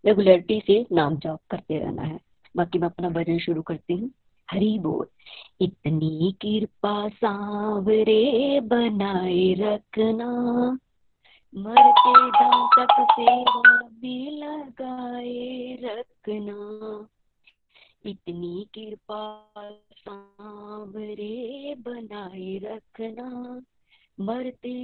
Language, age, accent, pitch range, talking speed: Hindi, 20-39, native, 215-280 Hz, 80 wpm